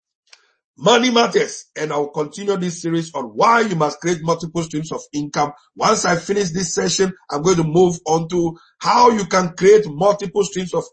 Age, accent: 50-69, Nigerian